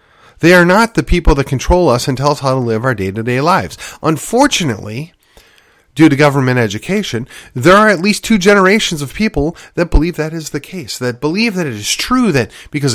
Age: 40-59